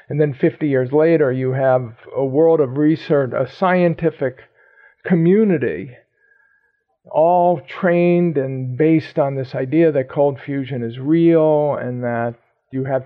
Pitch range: 130-160 Hz